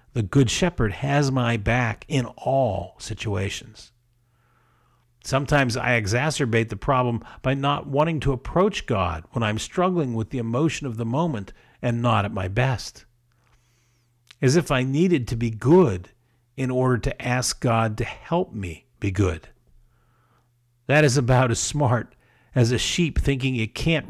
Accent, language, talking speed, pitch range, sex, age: American, English, 155 wpm, 115-135 Hz, male, 50-69